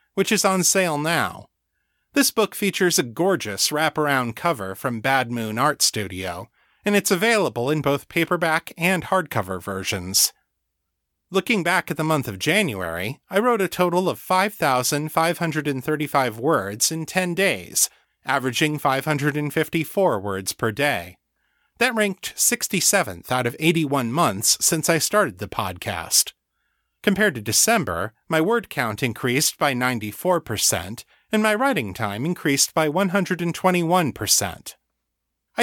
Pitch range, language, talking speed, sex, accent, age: 115-180 Hz, English, 130 wpm, male, American, 30-49